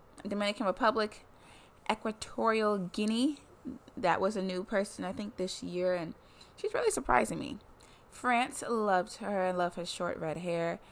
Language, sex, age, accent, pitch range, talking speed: English, female, 20-39, American, 160-200 Hz, 150 wpm